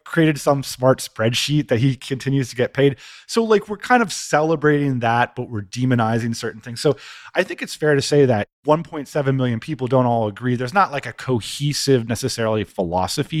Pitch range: 115-155 Hz